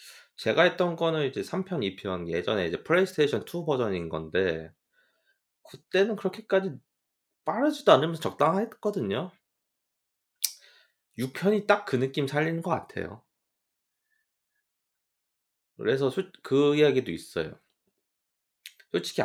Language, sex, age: Korean, male, 30-49